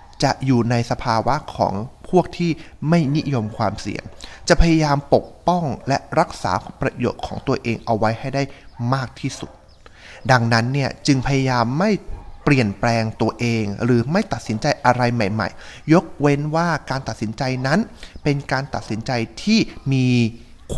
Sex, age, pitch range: male, 20-39, 110-145 Hz